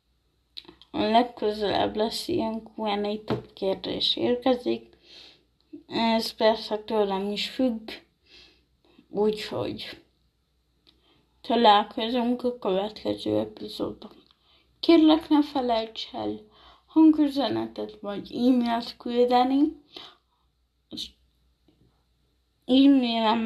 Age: 20-39